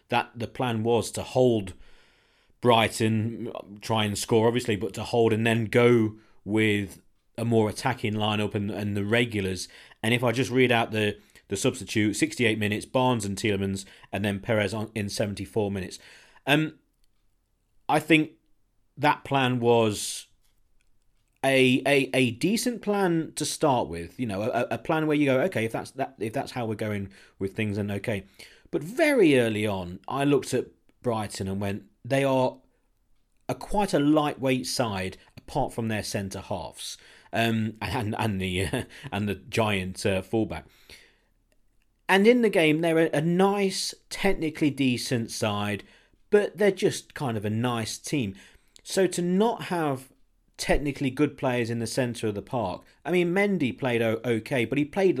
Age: 40-59